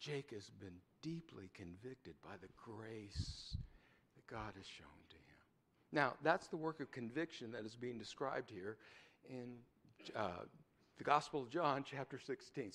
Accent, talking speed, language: American, 155 wpm, English